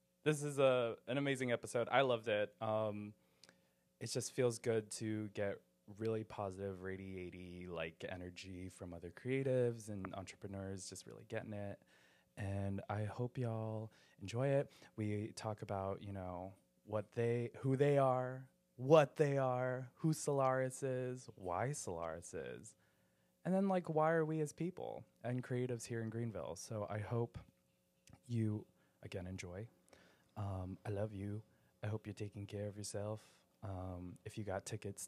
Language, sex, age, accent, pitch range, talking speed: English, male, 20-39, American, 95-125 Hz, 155 wpm